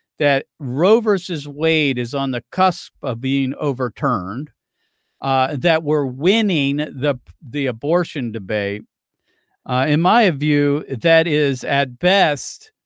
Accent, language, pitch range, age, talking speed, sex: American, English, 125-160 Hz, 50-69, 125 wpm, male